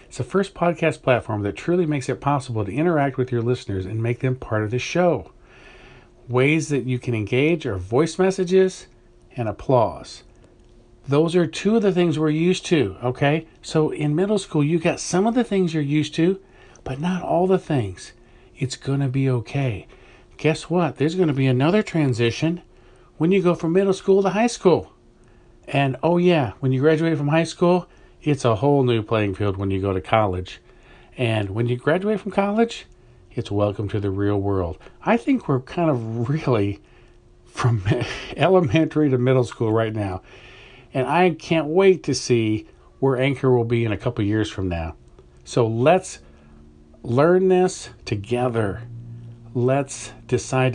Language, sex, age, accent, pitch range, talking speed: English, male, 50-69, American, 115-160 Hz, 175 wpm